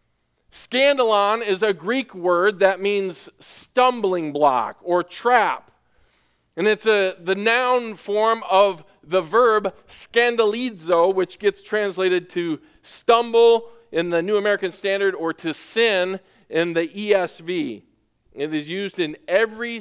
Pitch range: 165-220 Hz